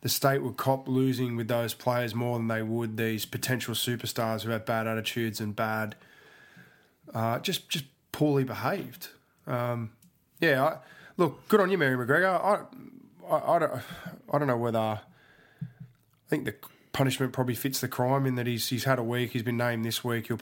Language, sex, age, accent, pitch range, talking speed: English, male, 20-39, Australian, 115-135 Hz, 190 wpm